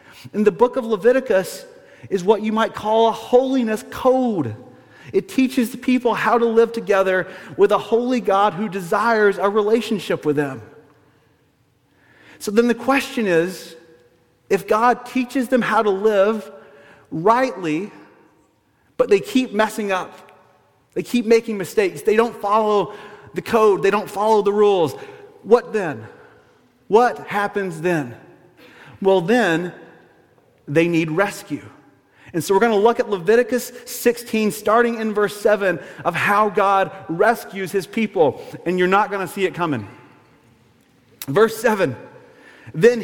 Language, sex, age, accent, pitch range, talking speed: English, male, 40-59, American, 185-240 Hz, 145 wpm